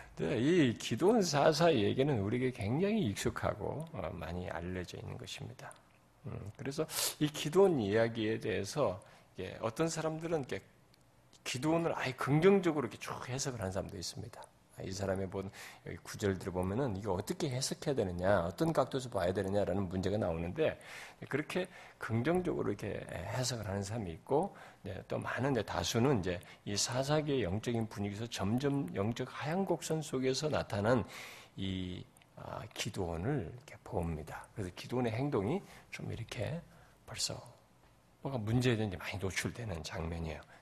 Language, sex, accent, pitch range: Korean, male, native, 100-150 Hz